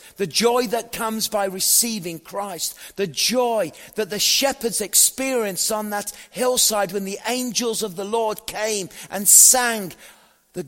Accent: British